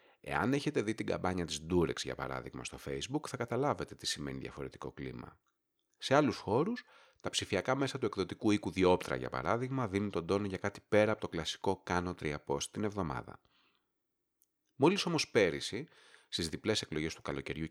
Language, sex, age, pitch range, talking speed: Greek, male, 30-49, 90-135 Hz, 170 wpm